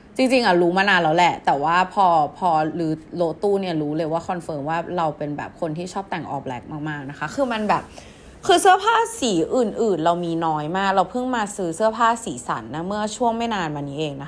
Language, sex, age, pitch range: Thai, female, 20-39, 150-200 Hz